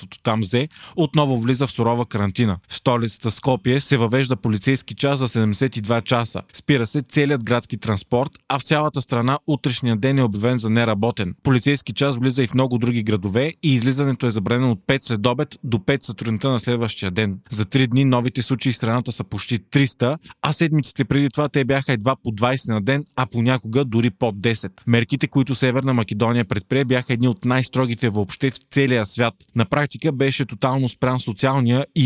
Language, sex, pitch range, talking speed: Bulgarian, male, 115-135 Hz, 180 wpm